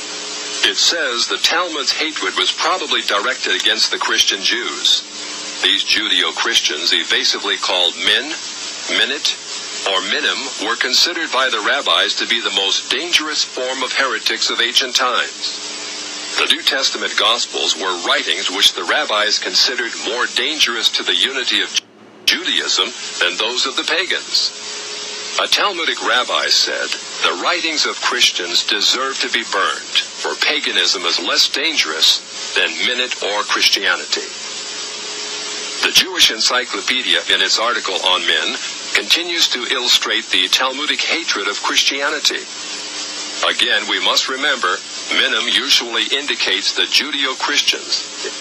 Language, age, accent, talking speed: English, 50-69, American, 130 wpm